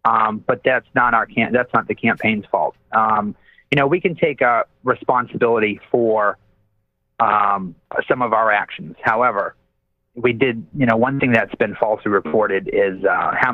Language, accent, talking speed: English, American, 175 wpm